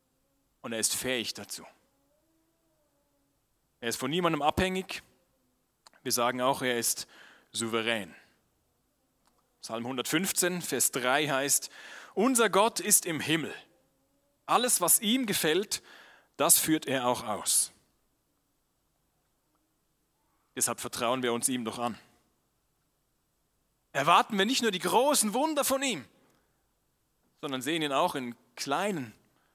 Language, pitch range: German, 120-185 Hz